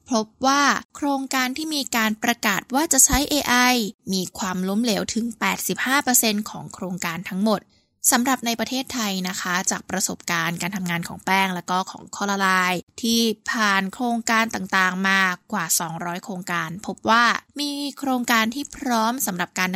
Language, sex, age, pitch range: Thai, female, 20-39, 185-245 Hz